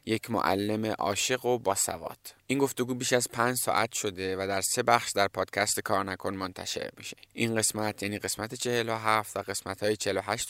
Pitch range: 100-120 Hz